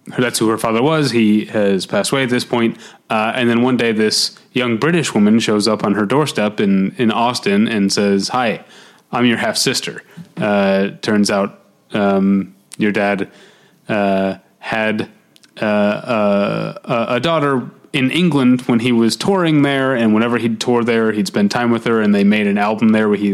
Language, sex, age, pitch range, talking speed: English, male, 30-49, 105-135 Hz, 190 wpm